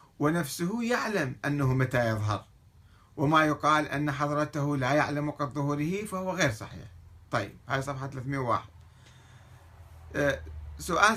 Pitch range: 105-150 Hz